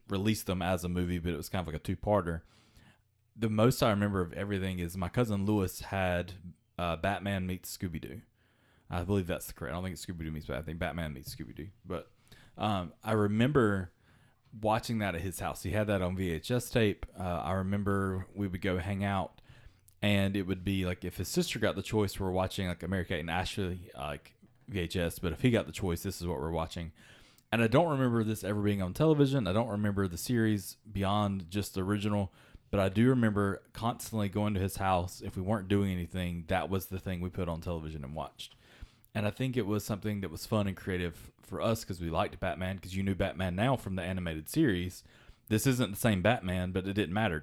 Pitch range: 90-105 Hz